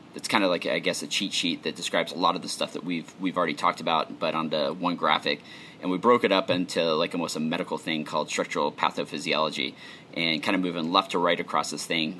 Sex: male